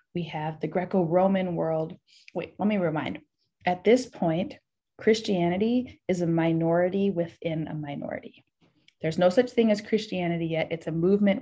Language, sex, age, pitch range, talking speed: English, female, 20-39, 160-215 Hz, 150 wpm